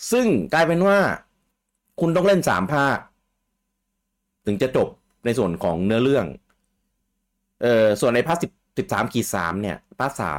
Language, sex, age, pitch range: Thai, male, 30-49, 85-125 Hz